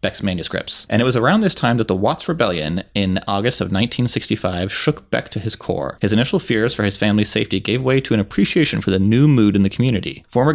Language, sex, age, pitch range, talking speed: English, male, 30-49, 95-120 Hz, 235 wpm